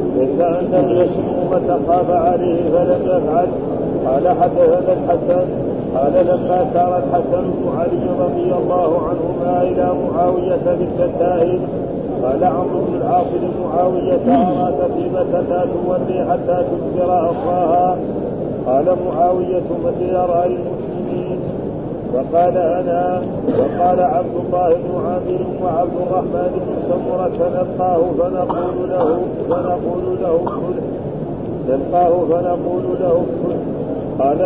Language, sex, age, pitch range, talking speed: Arabic, male, 50-69, 170-180 Hz, 100 wpm